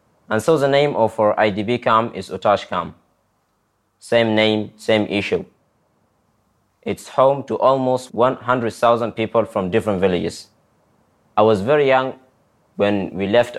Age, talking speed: 20-39, 135 wpm